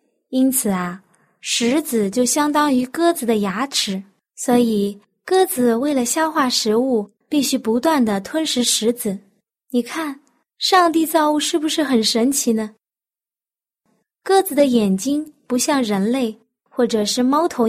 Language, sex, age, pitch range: Chinese, female, 20-39, 225-295 Hz